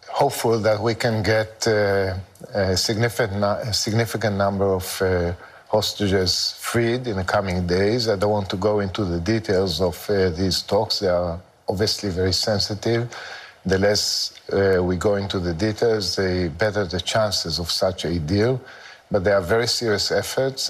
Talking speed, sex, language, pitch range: 160 wpm, male, Greek, 100-130 Hz